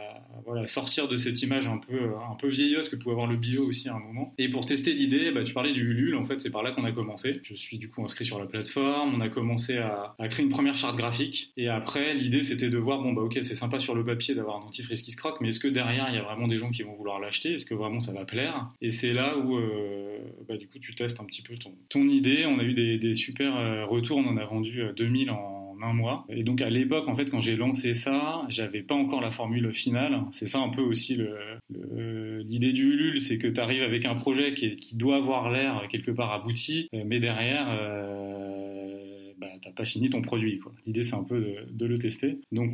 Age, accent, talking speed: 20-39, French, 265 wpm